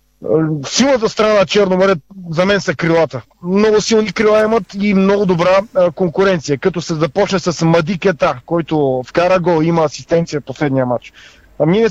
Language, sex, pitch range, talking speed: Bulgarian, male, 155-200 Hz, 160 wpm